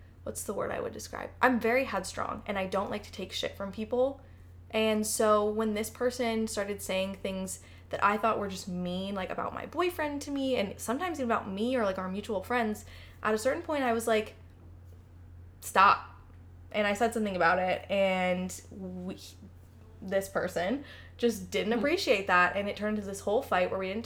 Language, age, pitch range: English, 20-39, 175-235 Hz